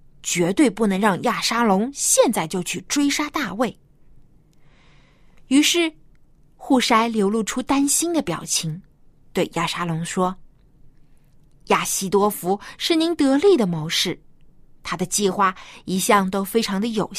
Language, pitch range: Chinese, 160-265 Hz